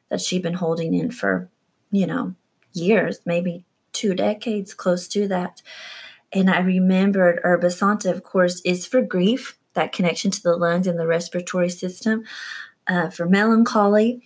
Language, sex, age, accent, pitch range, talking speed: English, female, 30-49, American, 180-220 Hz, 150 wpm